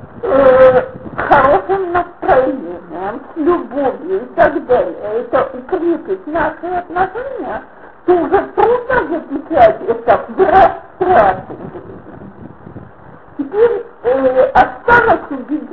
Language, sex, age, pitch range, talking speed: Russian, female, 50-69, 285-385 Hz, 75 wpm